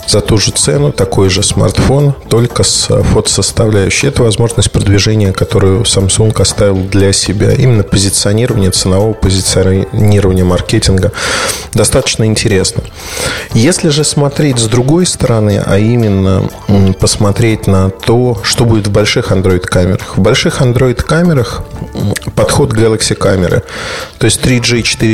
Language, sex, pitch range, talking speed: Russian, male, 100-120 Hz, 115 wpm